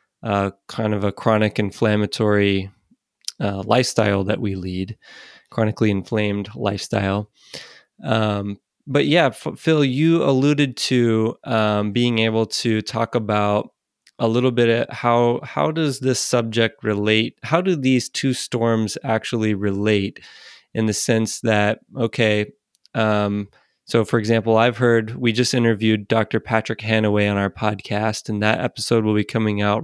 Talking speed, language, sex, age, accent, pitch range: 145 wpm, English, male, 20-39, American, 105-120 Hz